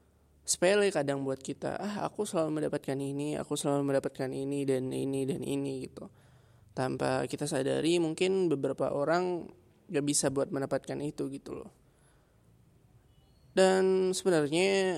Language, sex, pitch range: Indonesian, male, 135-160 Hz